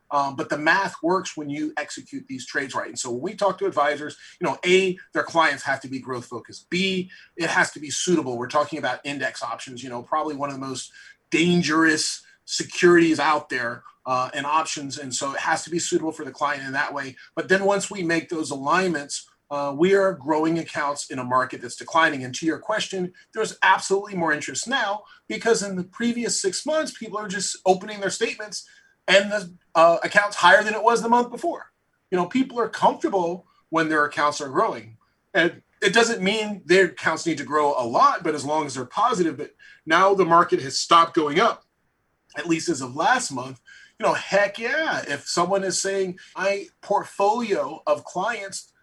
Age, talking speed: 30-49, 205 wpm